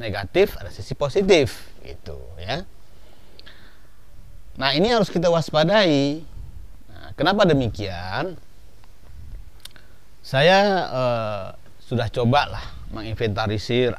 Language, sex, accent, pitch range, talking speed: Indonesian, male, native, 100-140 Hz, 85 wpm